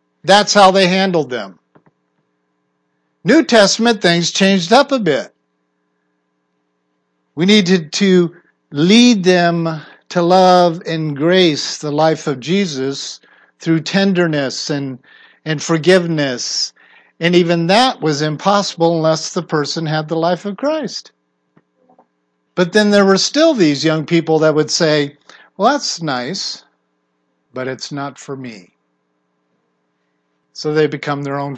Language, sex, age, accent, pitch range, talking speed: English, male, 50-69, American, 135-190 Hz, 125 wpm